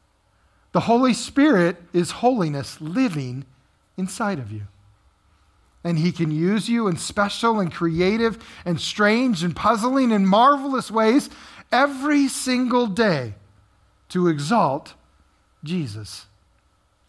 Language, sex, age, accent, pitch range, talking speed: English, male, 40-59, American, 145-215 Hz, 110 wpm